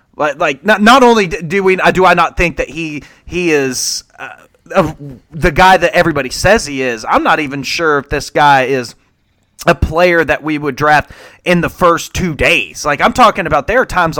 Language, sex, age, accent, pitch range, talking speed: English, male, 30-49, American, 125-170 Hz, 205 wpm